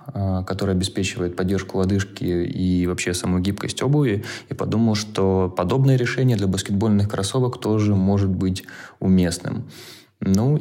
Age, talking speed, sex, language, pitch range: 20-39, 125 wpm, male, Russian, 90-105 Hz